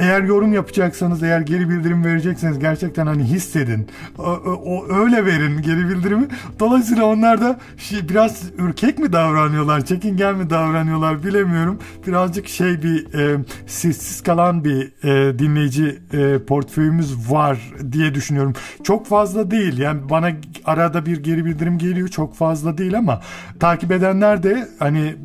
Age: 50-69